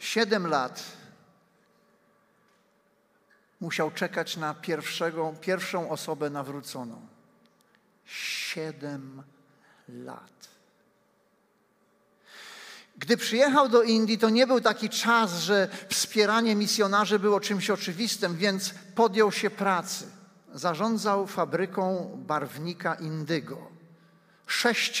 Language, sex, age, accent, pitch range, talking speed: Polish, male, 50-69, native, 170-210 Hz, 80 wpm